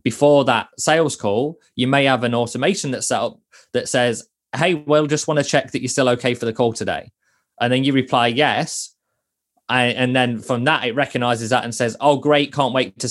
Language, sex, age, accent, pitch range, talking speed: English, male, 20-39, British, 120-145 Hz, 215 wpm